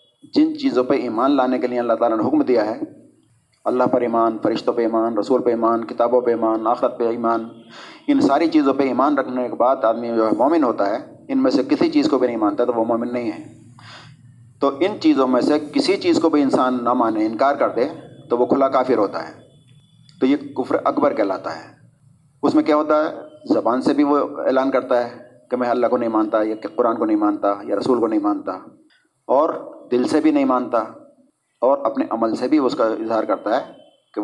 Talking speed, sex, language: 225 wpm, male, Urdu